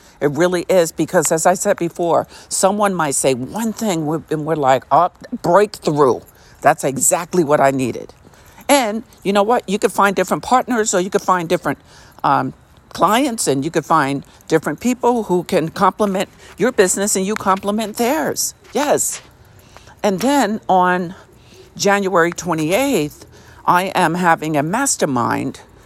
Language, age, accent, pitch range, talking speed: English, 50-69, American, 135-190 Hz, 150 wpm